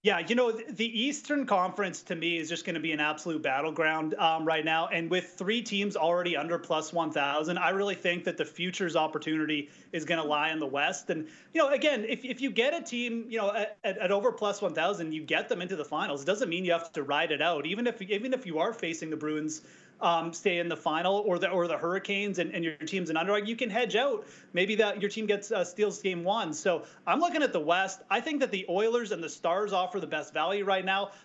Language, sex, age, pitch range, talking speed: English, male, 30-49, 165-210 Hz, 255 wpm